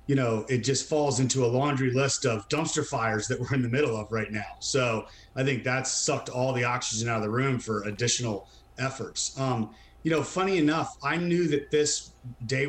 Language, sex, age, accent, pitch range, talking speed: English, male, 30-49, American, 120-145 Hz, 215 wpm